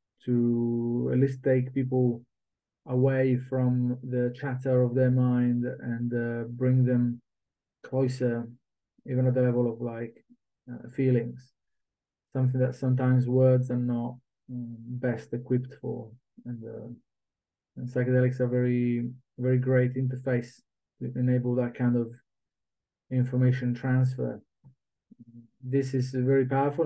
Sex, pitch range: male, 120-130 Hz